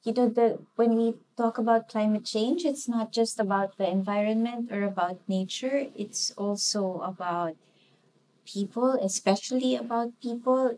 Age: 20-39